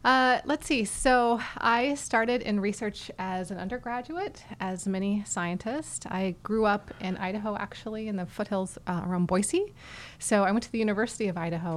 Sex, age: female, 20-39